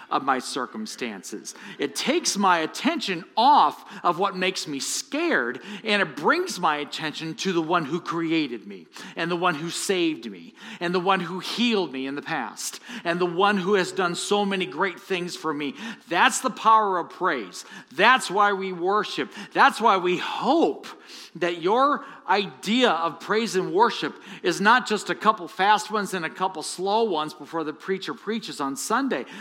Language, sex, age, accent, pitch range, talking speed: English, male, 50-69, American, 155-210 Hz, 180 wpm